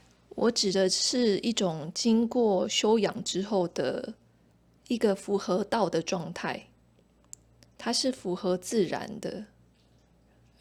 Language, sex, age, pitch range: Chinese, female, 20-39, 170-210 Hz